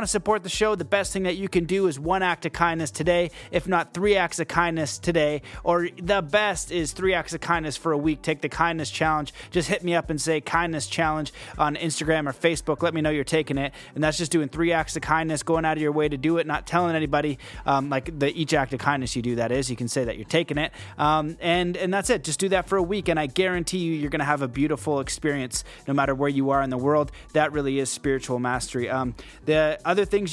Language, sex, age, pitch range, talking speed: English, male, 20-39, 145-175 Hz, 265 wpm